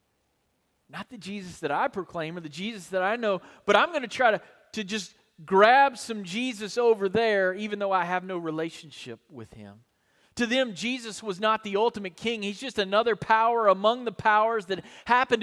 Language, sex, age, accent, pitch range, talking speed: English, male, 40-59, American, 165-220 Hz, 195 wpm